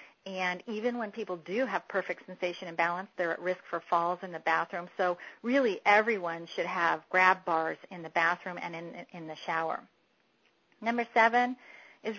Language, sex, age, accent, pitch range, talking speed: English, female, 40-59, American, 175-225 Hz, 175 wpm